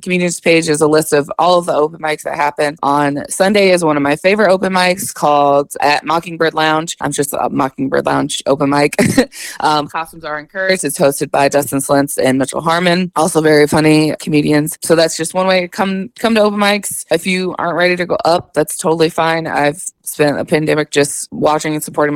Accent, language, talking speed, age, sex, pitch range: American, English, 210 wpm, 20-39, female, 145-170 Hz